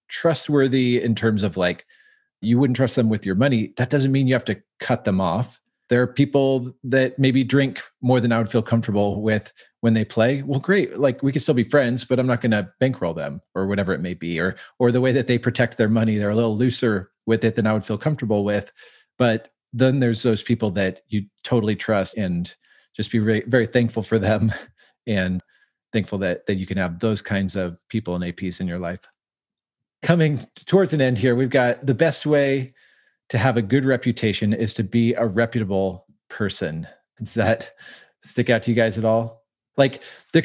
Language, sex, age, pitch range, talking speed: English, male, 40-59, 110-130 Hz, 210 wpm